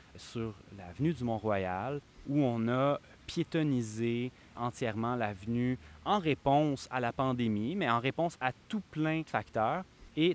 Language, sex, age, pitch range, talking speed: French, male, 20-39, 110-145 Hz, 140 wpm